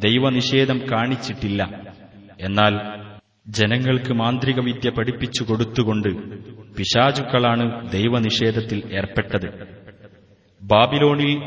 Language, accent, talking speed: Malayalam, native, 60 wpm